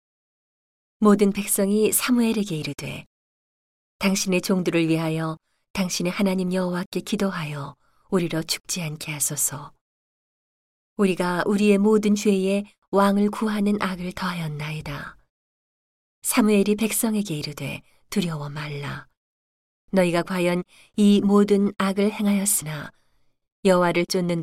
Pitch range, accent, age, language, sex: 155-200 Hz, native, 40-59, Korean, female